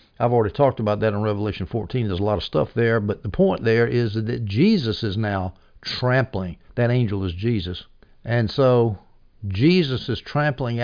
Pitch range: 100-130 Hz